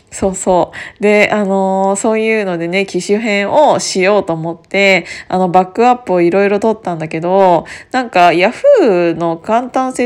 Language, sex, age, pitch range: Japanese, female, 20-39, 175-225 Hz